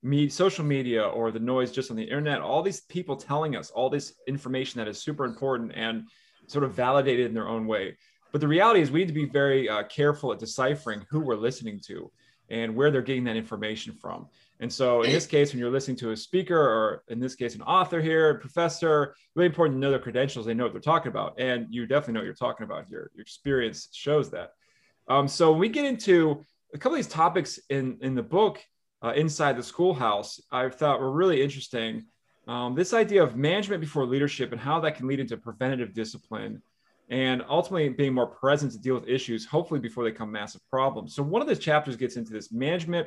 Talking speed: 225 wpm